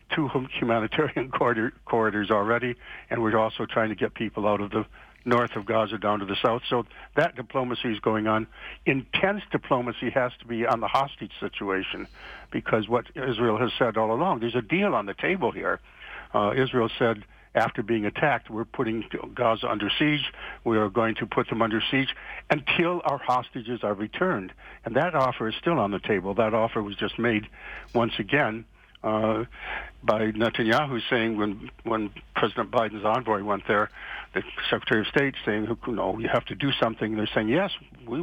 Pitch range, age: 110-125 Hz, 60-79